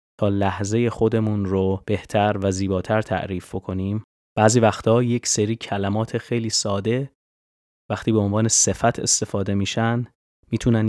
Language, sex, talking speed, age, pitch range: Persian, male, 125 wpm, 20-39, 95-115 Hz